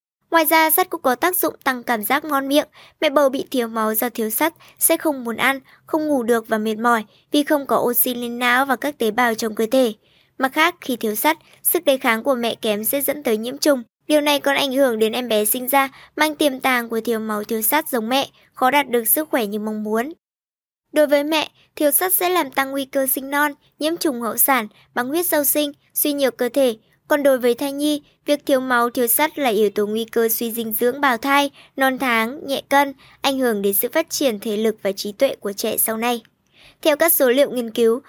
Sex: male